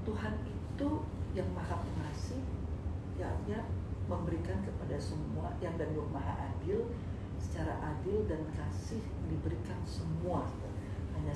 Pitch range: 90-100 Hz